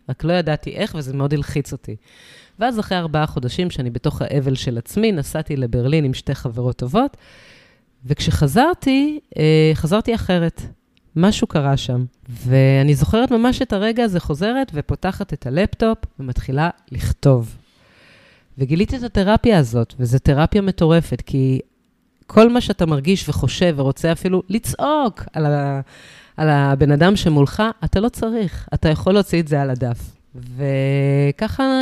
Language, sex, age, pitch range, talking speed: Hebrew, female, 30-49, 140-215 Hz, 140 wpm